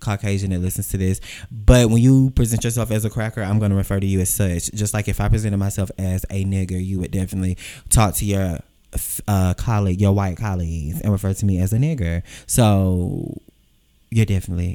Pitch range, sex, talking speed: 95-115 Hz, male, 210 wpm